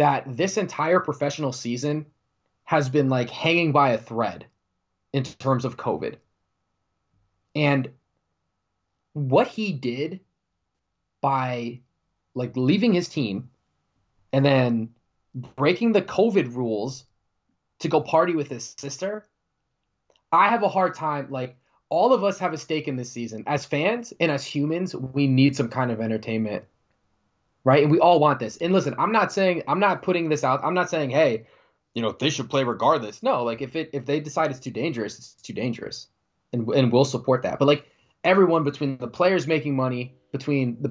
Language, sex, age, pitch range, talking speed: English, male, 20-39, 120-160 Hz, 170 wpm